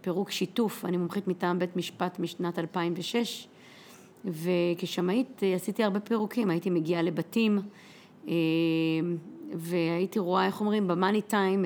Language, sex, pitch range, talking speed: Hebrew, female, 175-210 Hz, 115 wpm